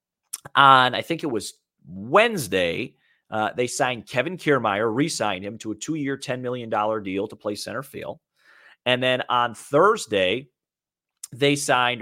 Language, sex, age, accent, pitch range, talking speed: English, male, 30-49, American, 110-150 Hz, 145 wpm